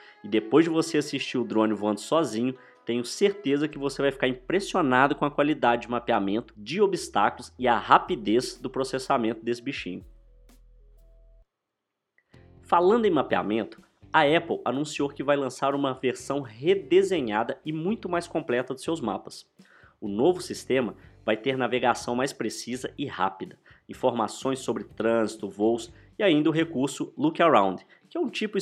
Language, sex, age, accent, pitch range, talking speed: Portuguese, male, 20-39, Brazilian, 115-155 Hz, 155 wpm